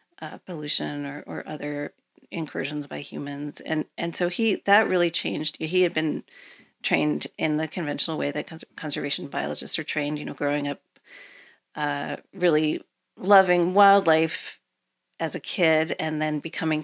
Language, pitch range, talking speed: English, 150-185 Hz, 155 wpm